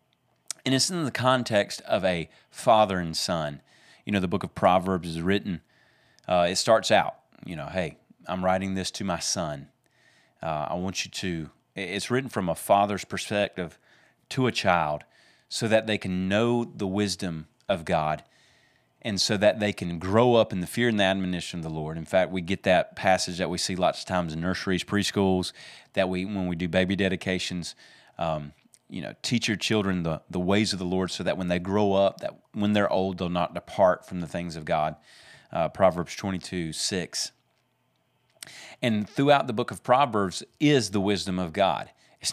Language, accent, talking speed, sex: English, American, 195 wpm, male